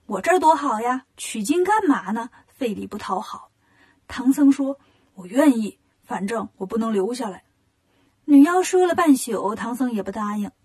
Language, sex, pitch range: Chinese, female, 215-285 Hz